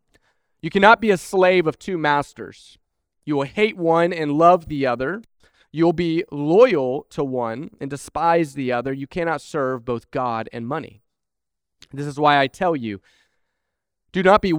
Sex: male